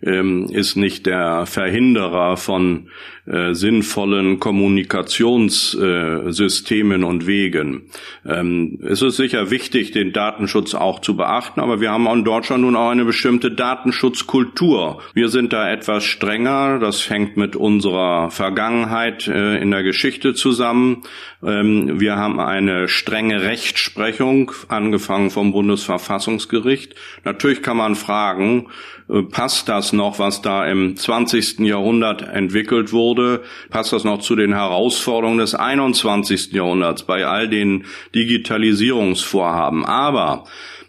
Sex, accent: male, German